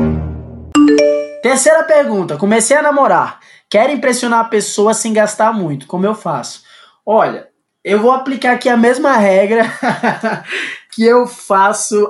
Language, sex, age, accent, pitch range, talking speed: Portuguese, male, 20-39, Brazilian, 170-235 Hz, 130 wpm